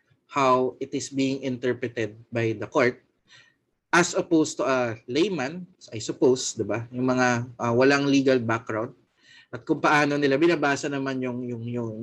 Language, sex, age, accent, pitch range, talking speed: Filipino, male, 20-39, native, 115-150 Hz, 160 wpm